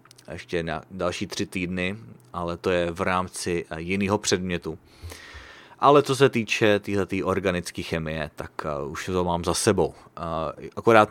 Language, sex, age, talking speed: English, male, 30-49, 140 wpm